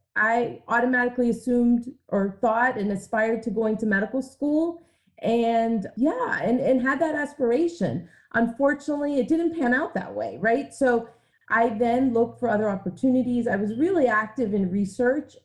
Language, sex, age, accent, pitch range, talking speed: English, female, 30-49, American, 200-245 Hz, 155 wpm